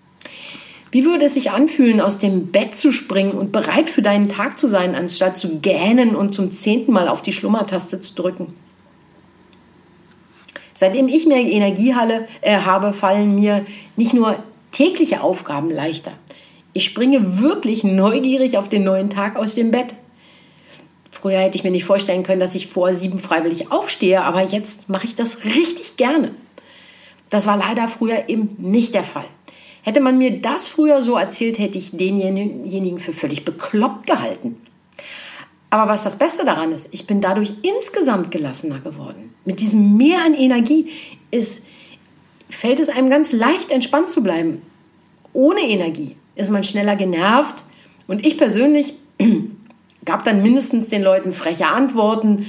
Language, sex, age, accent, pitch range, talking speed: German, female, 50-69, German, 190-255 Hz, 155 wpm